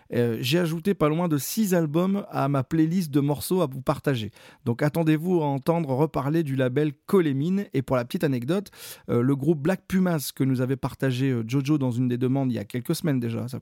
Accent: French